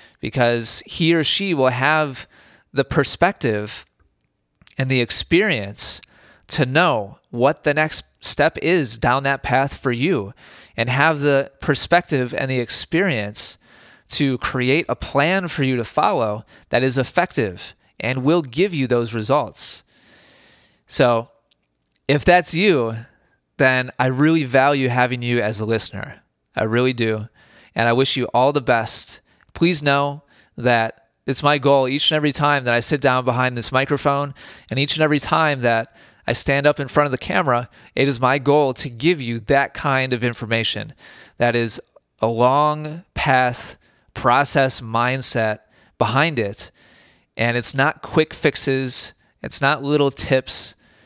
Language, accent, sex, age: English, American, male, 30-49